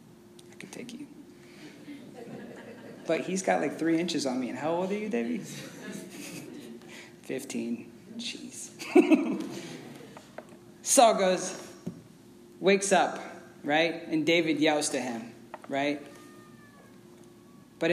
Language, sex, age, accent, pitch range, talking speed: English, male, 20-39, American, 155-225 Hz, 105 wpm